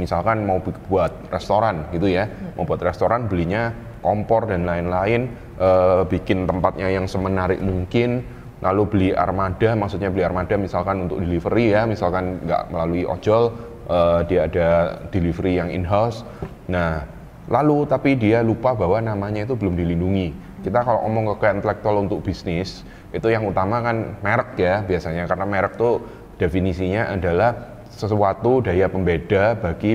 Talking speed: 145 wpm